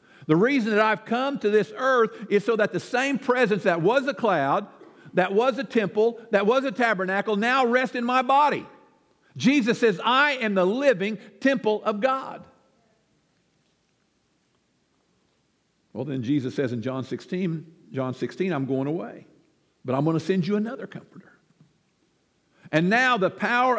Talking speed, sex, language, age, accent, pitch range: 160 wpm, male, English, 50-69, American, 190-250 Hz